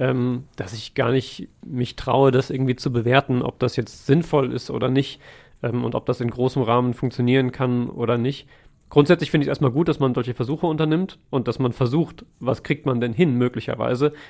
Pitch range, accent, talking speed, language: 125-145 Hz, German, 195 wpm, German